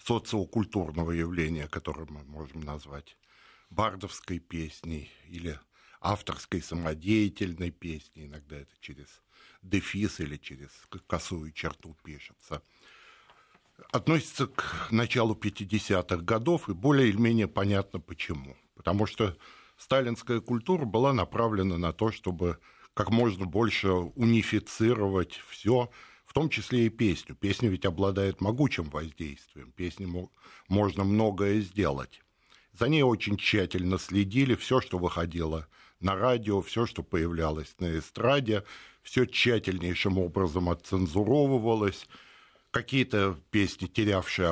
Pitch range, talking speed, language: 85-110 Hz, 110 wpm, Russian